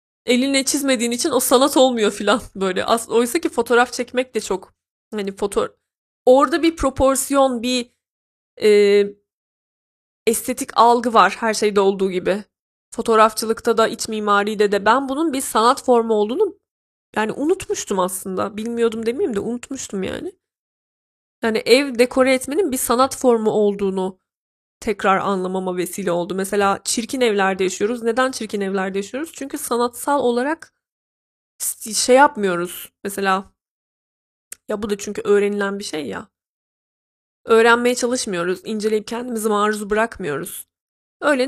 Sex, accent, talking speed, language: female, native, 130 wpm, Turkish